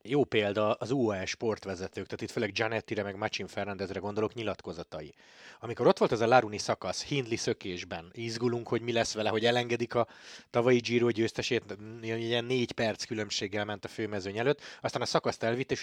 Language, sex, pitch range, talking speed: Hungarian, male, 105-120 Hz, 180 wpm